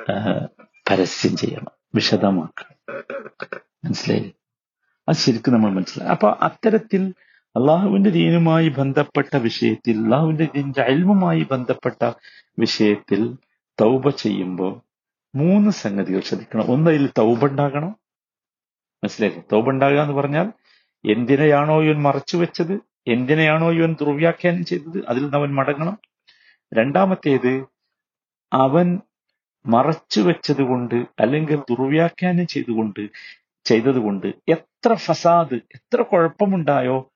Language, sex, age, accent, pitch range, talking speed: Malayalam, male, 50-69, native, 120-175 Hz, 85 wpm